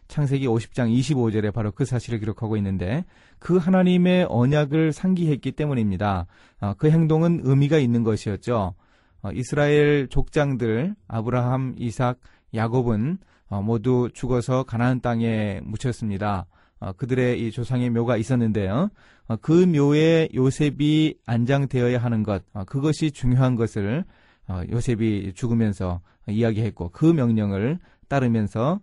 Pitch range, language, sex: 110-155 Hz, Korean, male